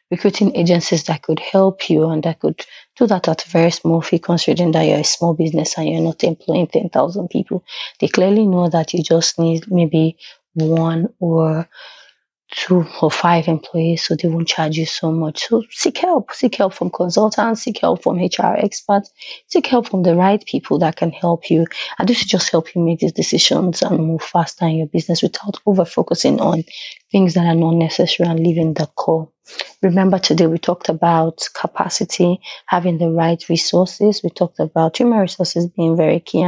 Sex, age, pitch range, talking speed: female, 20-39, 165-195 Hz, 190 wpm